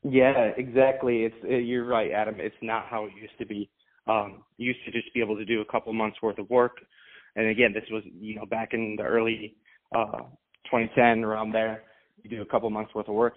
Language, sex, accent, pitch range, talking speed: English, male, American, 110-130 Hz, 225 wpm